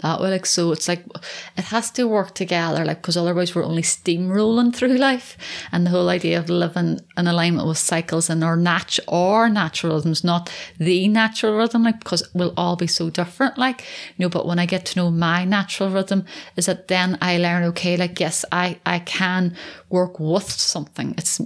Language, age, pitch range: English, 30-49, 170-190 Hz